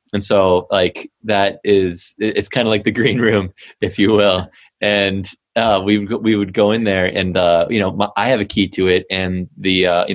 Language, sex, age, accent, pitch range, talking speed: English, male, 20-39, American, 90-105 Hz, 235 wpm